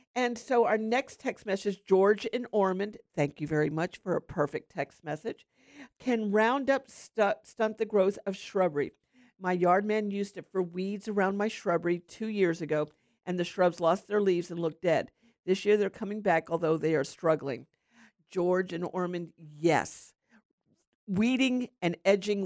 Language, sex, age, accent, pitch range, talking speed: English, female, 50-69, American, 165-210 Hz, 170 wpm